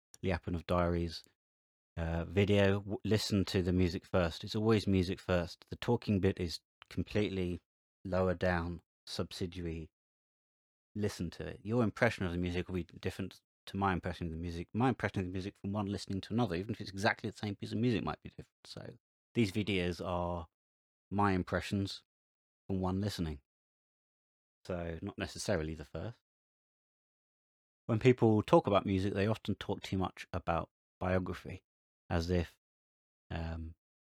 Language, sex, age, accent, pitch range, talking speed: English, male, 30-49, British, 85-100 Hz, 155 wpm